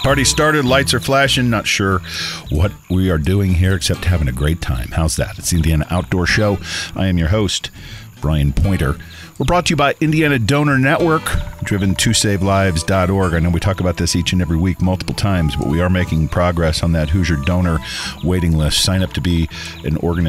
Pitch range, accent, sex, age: 80-100 Hz, American, male, 50-69